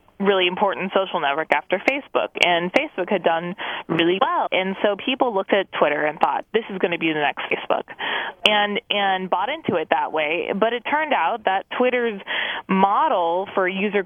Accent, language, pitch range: American, English, 175-205 Hz